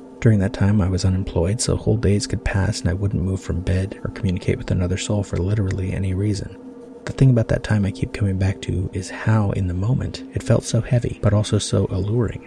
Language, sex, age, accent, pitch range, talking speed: English, male, 30-49, American, 95-115 Hz, 235 wpm